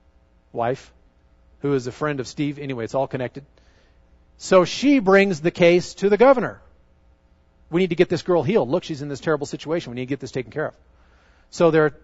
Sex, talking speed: male, 205 wpm